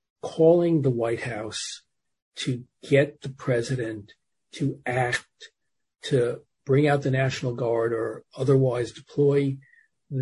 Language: English